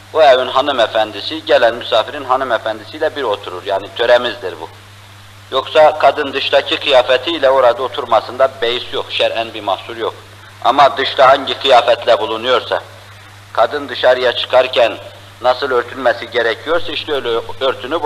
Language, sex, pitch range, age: Turkish, male, 100-150 Hz, 50-69